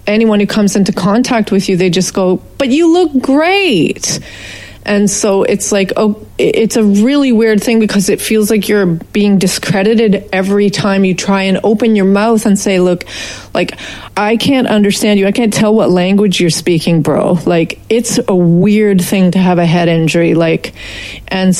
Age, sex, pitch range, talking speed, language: 30-49, female, 180-220 Hz, 185 wpm, English